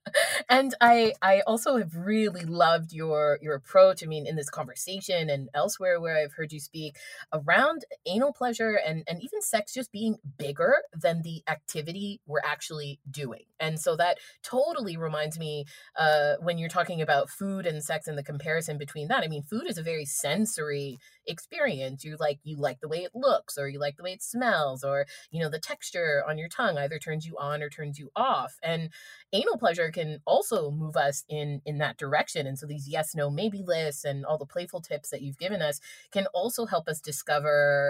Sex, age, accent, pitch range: female, 30-49, American, 145-190 Hz